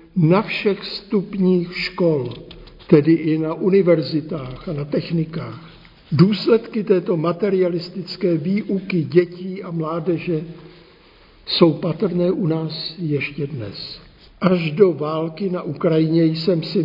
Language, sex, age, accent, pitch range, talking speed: Czech, male, 60-79, native, 160-185 Hz, 110 wpm